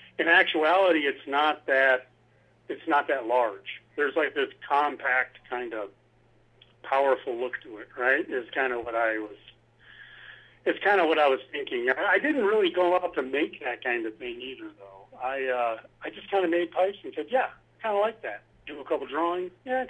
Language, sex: English, male